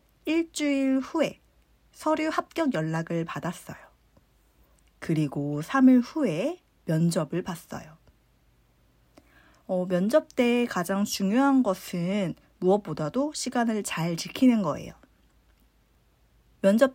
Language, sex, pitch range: Korean, female, 155-250 Hz